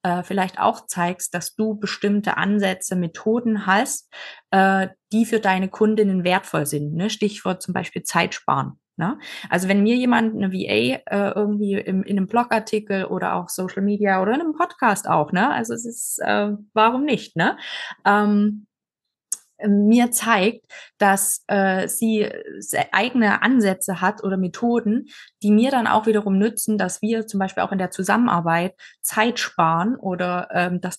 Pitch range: 180-215 Hz